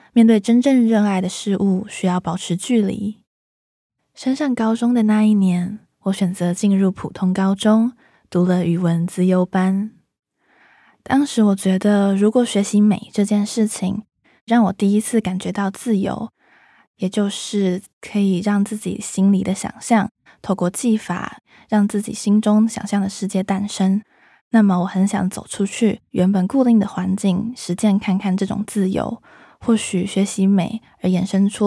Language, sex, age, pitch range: Chinese, female, 20-39, 190-220 Hz